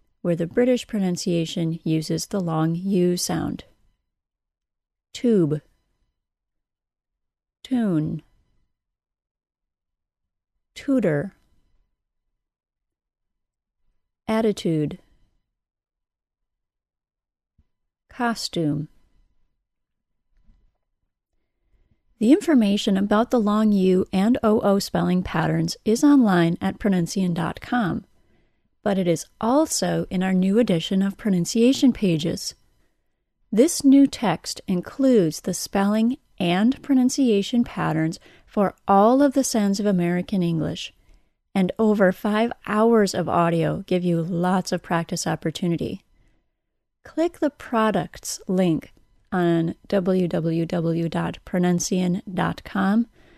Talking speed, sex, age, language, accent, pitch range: 85 wpm, female, 40-59, English, American, 170-225 Hz